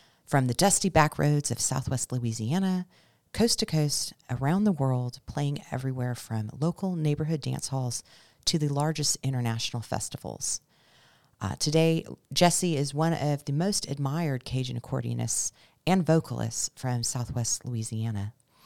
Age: 40-59